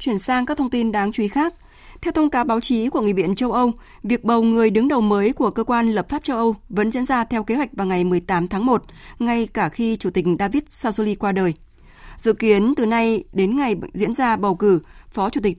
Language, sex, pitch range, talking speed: Vietnamese, female, 195-240 Hz, 250 wpm